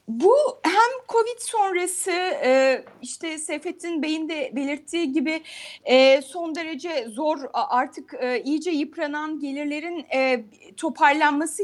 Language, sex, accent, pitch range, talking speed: Turkish, female, native, 285-385 Hz, 95 wpm